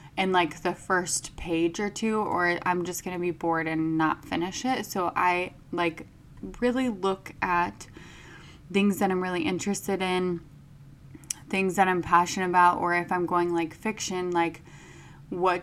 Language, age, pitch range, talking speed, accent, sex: English, 20-39, 165-185 Hz, 165 wpm, American, female